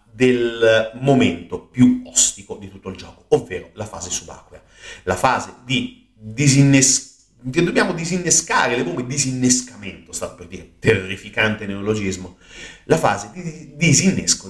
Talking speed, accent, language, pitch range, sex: 110 wpm, native, Italian, 100-130 Hz, male